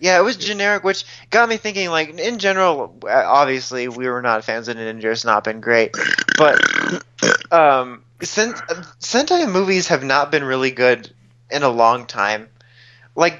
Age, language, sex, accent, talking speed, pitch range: 20-39, English, male, American, 170 wpm, 120-150 Hz